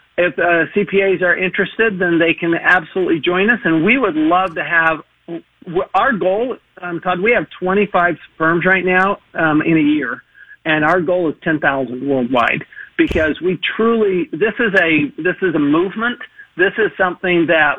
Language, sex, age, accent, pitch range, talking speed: English, male, 50-69, American, 155-195 Hz, 170 wpm